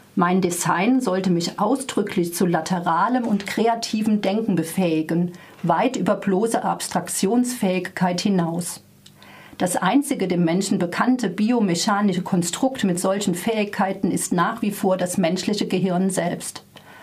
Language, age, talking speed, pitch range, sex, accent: German, 40-59, 120 wpm, 180-220 Hz, female, German